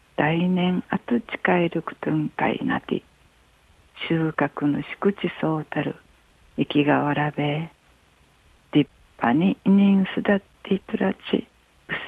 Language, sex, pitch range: Japanese, female, 145-205 Hz